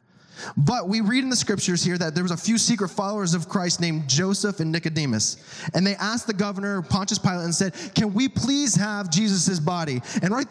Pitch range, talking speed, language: 150-205 Hz, 210 wpm, English